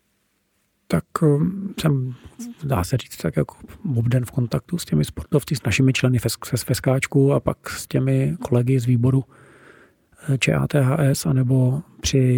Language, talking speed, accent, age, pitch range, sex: Czech, 130 wpm, native, 40-59, 125-135 Hz, male